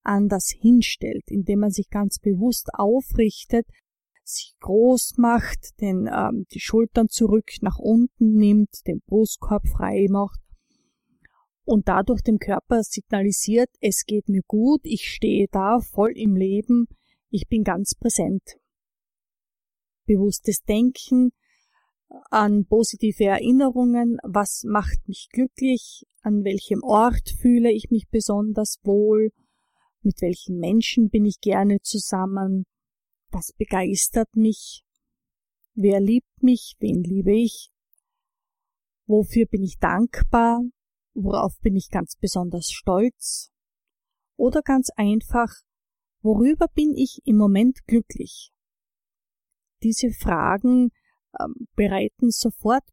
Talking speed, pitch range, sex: 110 wpm, 205-245 Hz, female